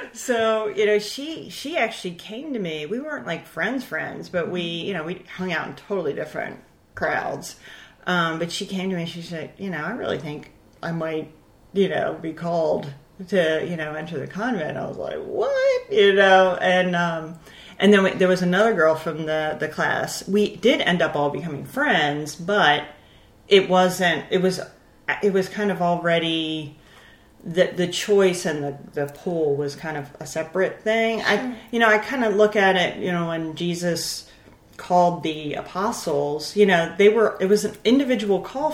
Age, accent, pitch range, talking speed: 40-59, American, 160-210 Hz, 195 wpm